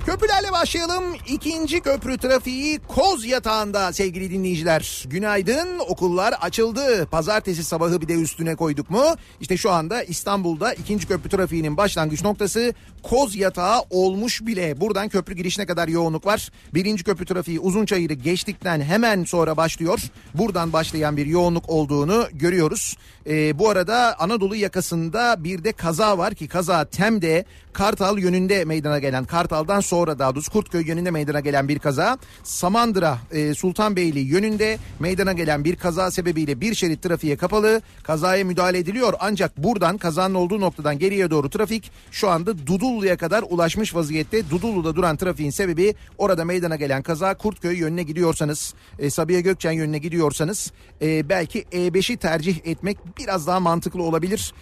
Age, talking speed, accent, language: 40-59, 145 wpm, native, Turkish